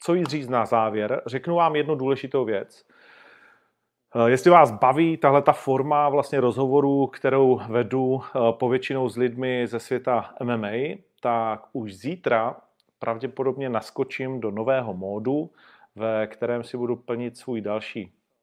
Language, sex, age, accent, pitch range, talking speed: Czech, male, 40-59, native, 115-135 Hz, 135 wpm